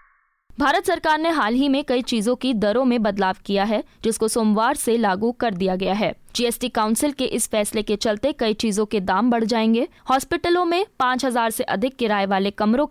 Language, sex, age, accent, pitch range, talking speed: Hindi, female, 20-39, native, 215-280 Hz, 205 wpm